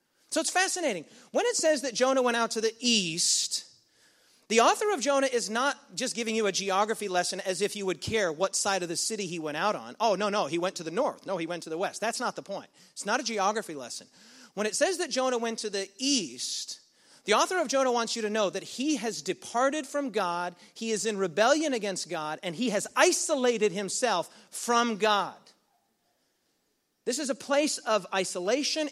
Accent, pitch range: American, 190-265 Hz